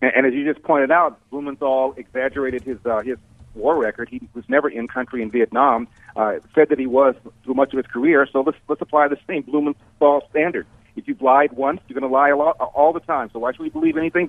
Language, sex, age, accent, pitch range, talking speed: English, male, 50-69, American, 130-175 Hz, 230 wpm